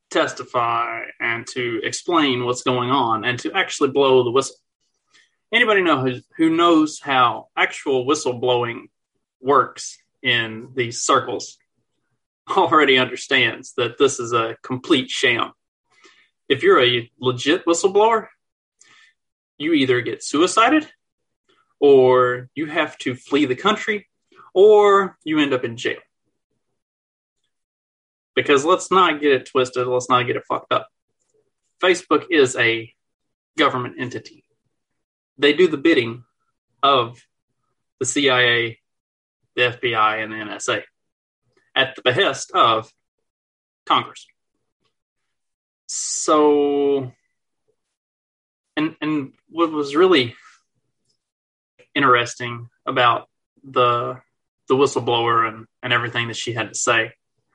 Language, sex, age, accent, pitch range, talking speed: English, male, 30-49, American, 120-170 Hz, 110 wpm